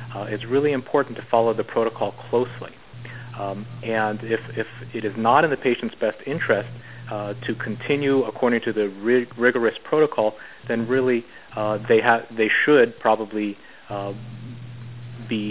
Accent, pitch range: American, 110-125 Hz